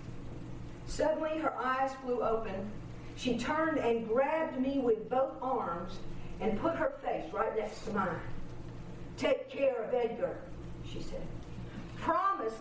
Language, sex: English, female